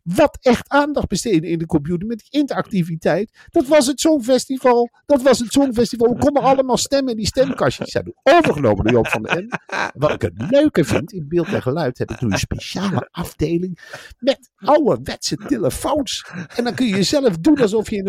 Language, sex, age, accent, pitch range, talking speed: Dutch, male, 50-69, Dutch, 195-285 Hz, 195 wpm